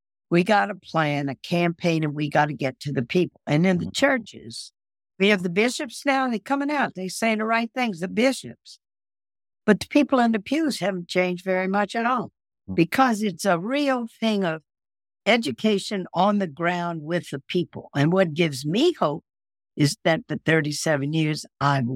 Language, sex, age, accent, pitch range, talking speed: English, female, 60-79, American, 150-205 Hz, 190 wpm